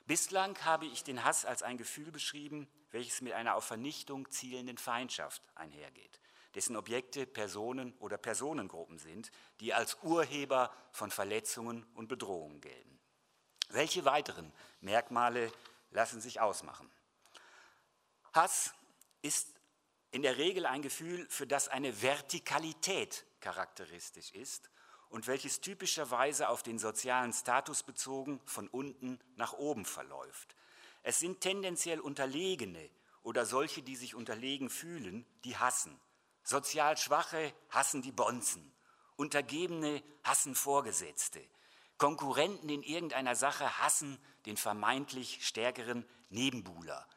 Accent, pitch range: German, 120-150 Hz